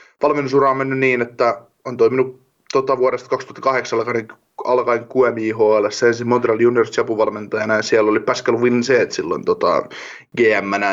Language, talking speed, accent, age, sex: Finnish, 130 wpm, native, 20-39, male